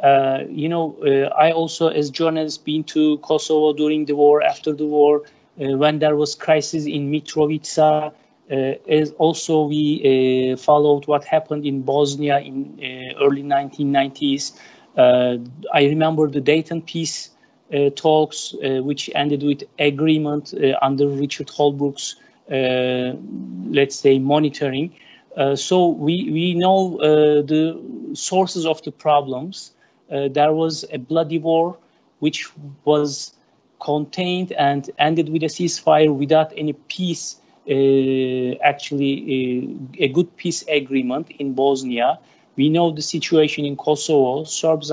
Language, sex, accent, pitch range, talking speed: Turkish, male, native, 140-160 Hz, 140 wpm